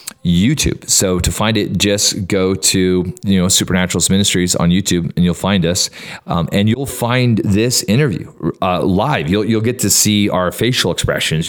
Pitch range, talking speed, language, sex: 90-105 Hz, 180 wpm, English, male